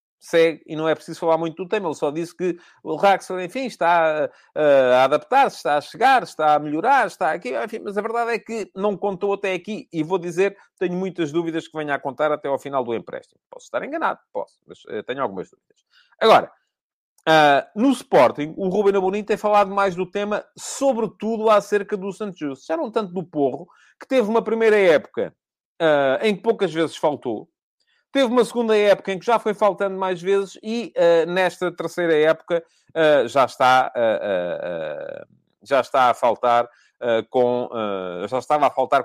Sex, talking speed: male, 175 wpm